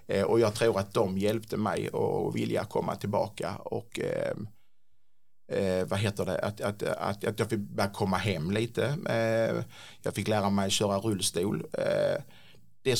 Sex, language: male, Swedish